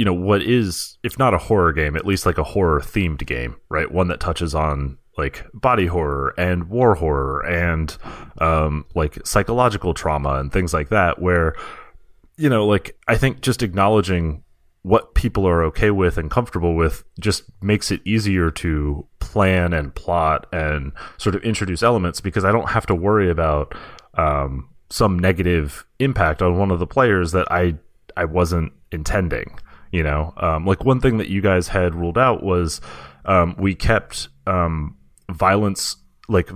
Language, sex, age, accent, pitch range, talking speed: English, male, 30-49, American, 80-100 Hz, 170 wpm